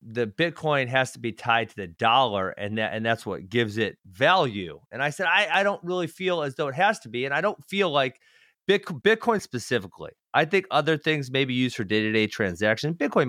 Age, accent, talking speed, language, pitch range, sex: 30-49, American, 220 wpm, English, 115-155 Hz, male